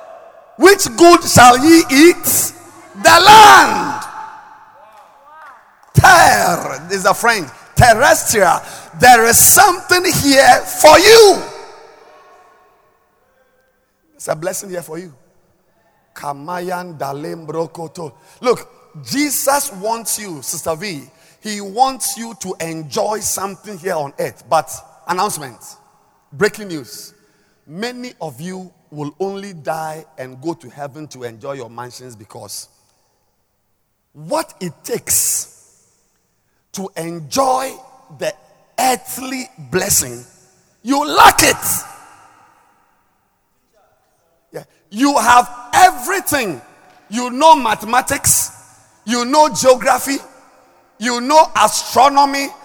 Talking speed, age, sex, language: 95 wpm, 50-69, male, English